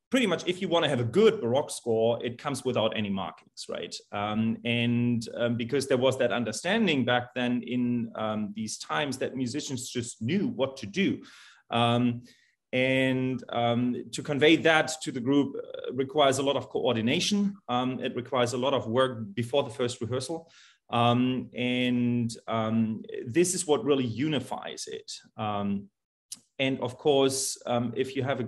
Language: English